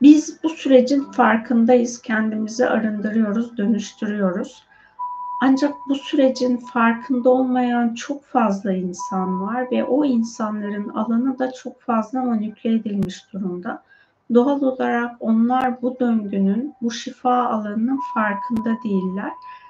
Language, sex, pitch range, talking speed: Turkish, female, 210-260 Hz, 110 wpm